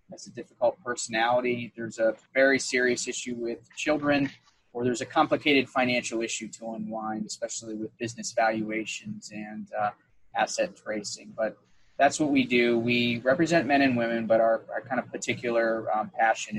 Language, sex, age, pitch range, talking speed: English, male, 20-39, 110-130 Hz, 165 wpm